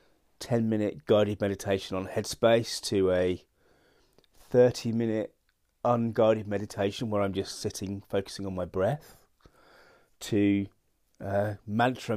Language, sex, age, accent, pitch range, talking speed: English, male, 30-49, British, 95-115 Hz, 115 wpm